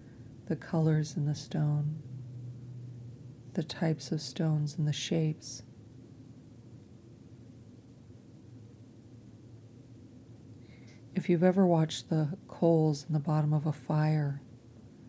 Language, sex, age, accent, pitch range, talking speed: English, female, 40-59, American, 120-155 Hz, 95 wpm